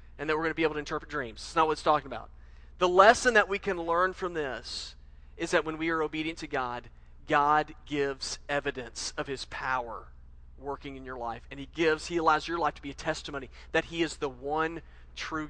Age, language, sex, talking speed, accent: 40-59, English, male, 230 wpm, American